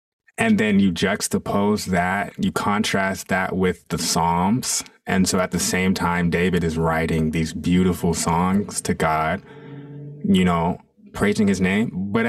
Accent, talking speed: American, 150 wpm